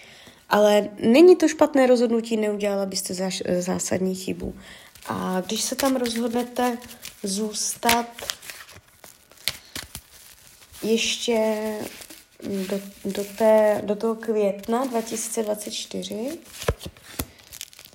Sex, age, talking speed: female, 20-39, 75 wpm